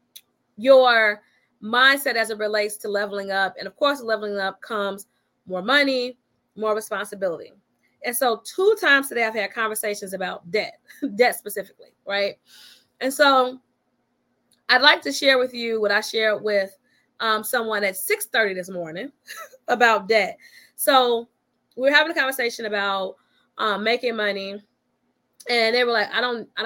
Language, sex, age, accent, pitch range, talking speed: English, female, 20-39, American, 210-270 Hz, 155 wpm